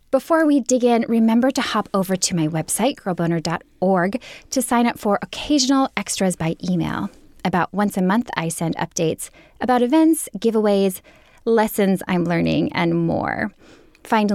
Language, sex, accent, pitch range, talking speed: English, female, American, 180-245 Hz, 150 wpm